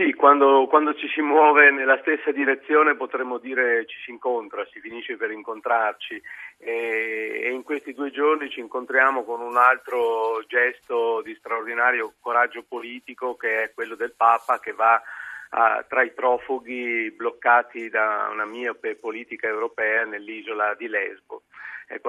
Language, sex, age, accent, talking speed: Italian, male, 40-59, native, 145 wpm